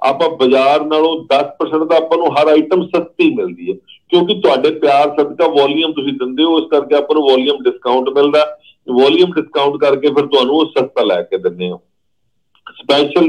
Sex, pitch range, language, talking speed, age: male, 130-155 Hz, Punjabi, 170 wpm, 50-69